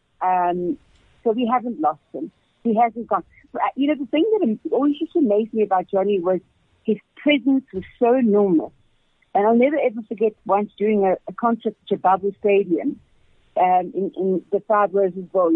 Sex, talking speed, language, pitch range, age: female, 175 wpm, English, 190-245 Hz, 50-69